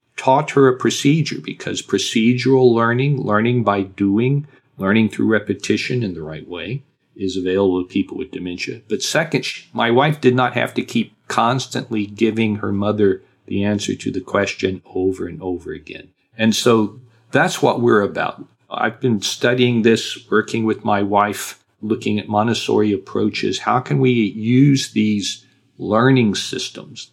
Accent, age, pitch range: American, 50-69, 95-120 Hz